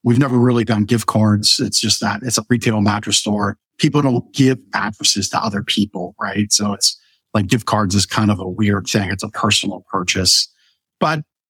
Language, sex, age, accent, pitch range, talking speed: English, male, 50-69, American, 105-130 Hz, 200 wpm